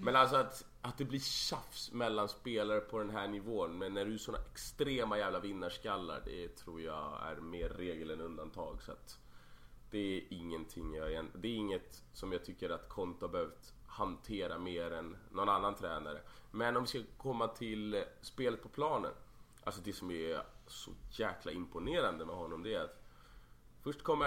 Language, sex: Swedish, male